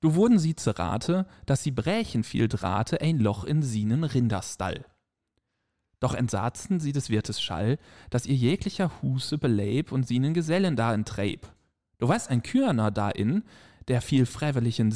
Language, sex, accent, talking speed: German, male, German, 155 wpm